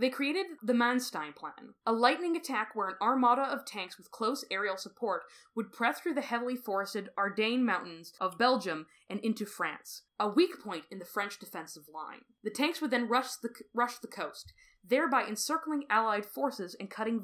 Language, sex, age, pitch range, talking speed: English, female, 20-39, 200-260 Hz, 185 wpm